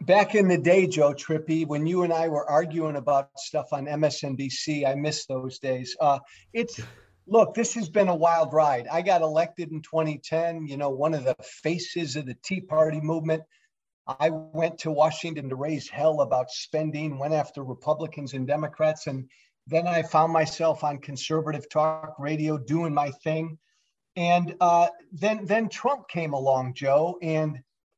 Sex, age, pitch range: male, 50-69, 145-180 Hz